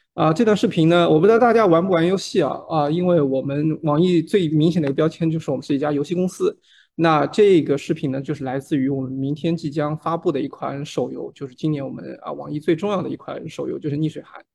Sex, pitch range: male, 145-170 Hz